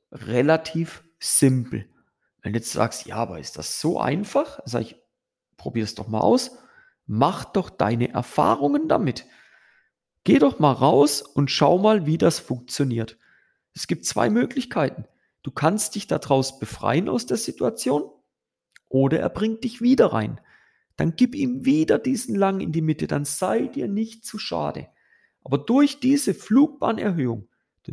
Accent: German